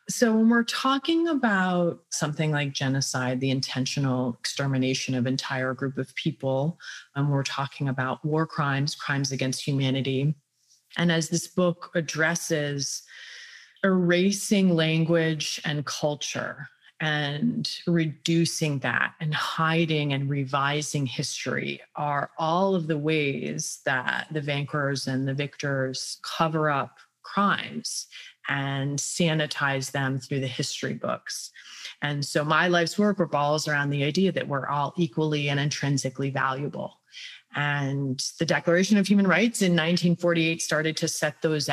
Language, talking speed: English, 130 wpm